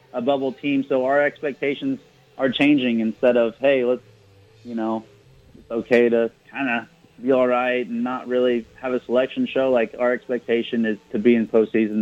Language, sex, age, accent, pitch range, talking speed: English, male, 30-49, American, 110-130 Hz, 185 wpm